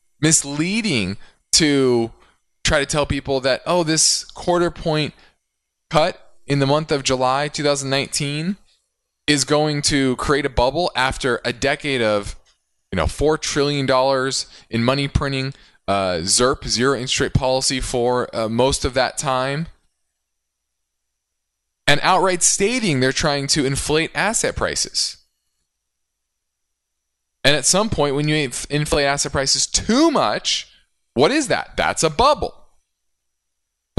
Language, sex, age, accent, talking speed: English, male, 20-39, American, 130 wpm